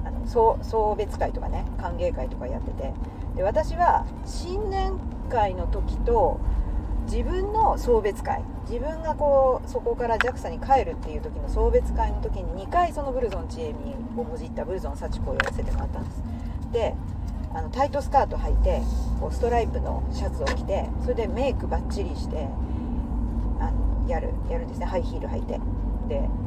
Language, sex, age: Japanese, female, 40-59